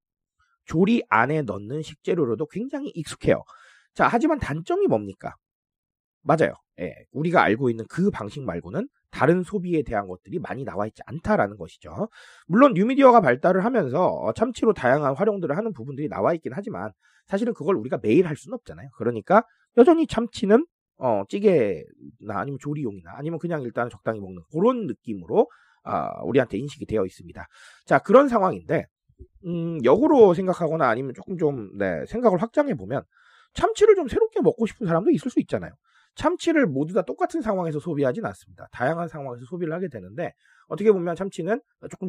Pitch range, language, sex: 140-225 Hz, Korean, male